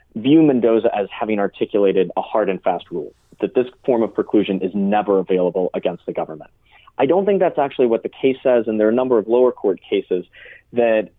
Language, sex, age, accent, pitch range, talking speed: English, male, 30-49, American, 100-125 Hz, 215 wpm